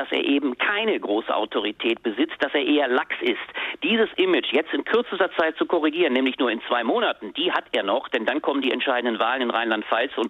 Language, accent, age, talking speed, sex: German, German, 50-69, 220 wpm, male